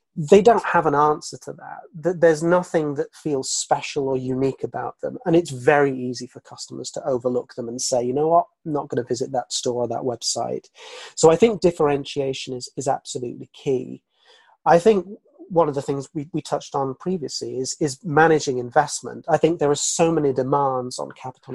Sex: male